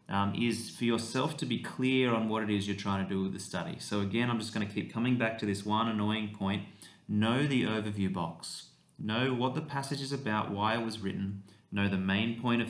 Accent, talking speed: Australian, 240 wpm